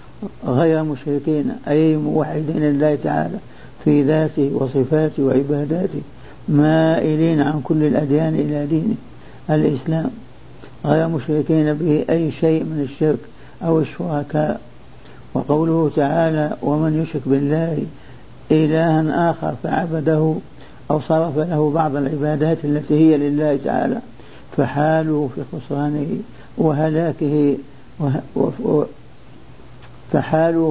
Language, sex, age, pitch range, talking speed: Arabic, male, 60-79, 145-160 Hz, 95 wpm